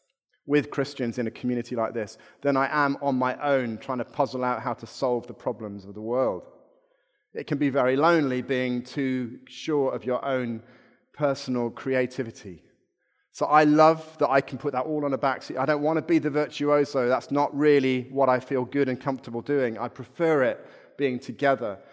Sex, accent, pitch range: male, British, 125-155 Hz